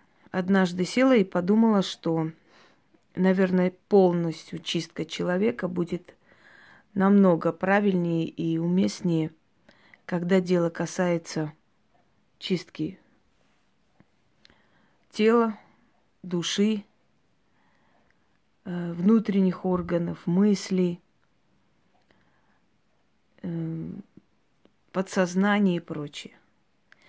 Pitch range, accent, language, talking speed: 175-205 Hz, native, Russian, 60 wpm